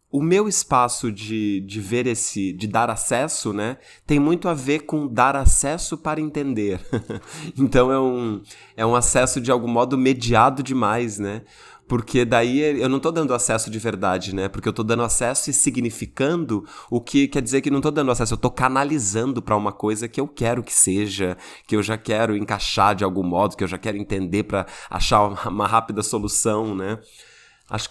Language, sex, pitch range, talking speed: Portuguese, male, 100-125 Hz, 195 wpm